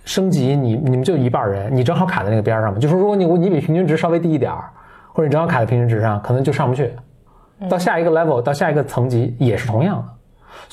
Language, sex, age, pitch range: Chinese, male, 20-39, 110-165 Hz